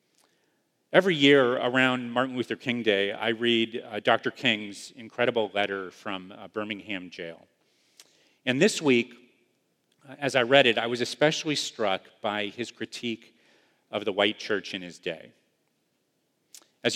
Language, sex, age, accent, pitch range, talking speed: English, male, 40-59, American, 105-130 Hz, 140 wpm